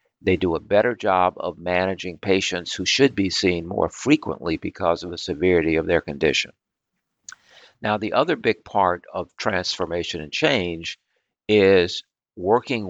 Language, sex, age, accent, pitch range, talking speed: English, male, 50-69, American, 85-100 Hz, 150 wpm